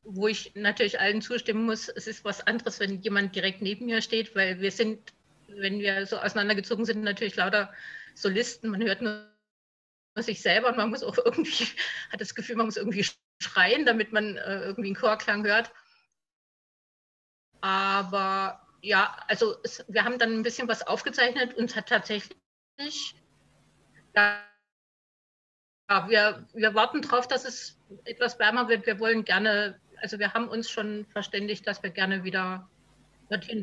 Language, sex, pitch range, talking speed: German, female, 195-225 Hz, 150 wpm